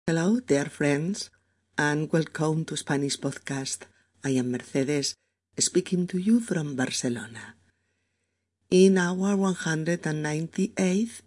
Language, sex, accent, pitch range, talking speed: Spanish, female, Spanish, 120-180 Hz, 100 wpm